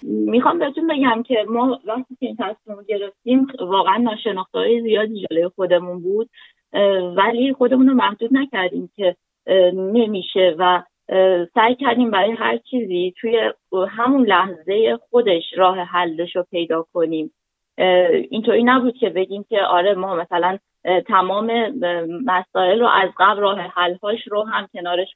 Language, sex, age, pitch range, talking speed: Persian, female, 30-49, 185-235 Hz, 140 wpm